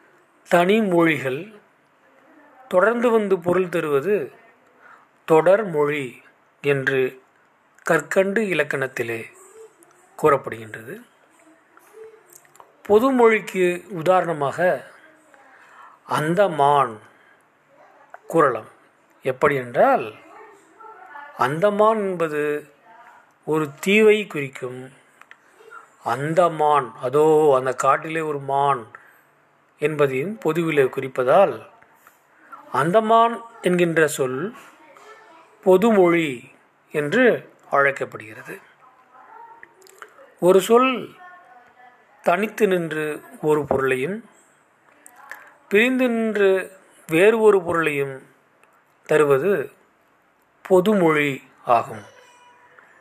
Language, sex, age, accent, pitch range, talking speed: Tamil, male, 40-59, native, 150-225 Hz, 60 wpm